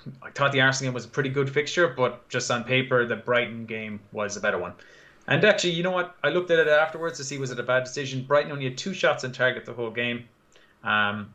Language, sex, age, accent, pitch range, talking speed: English, male, 20-39, Irish, 115-135 Hz, 260 wpm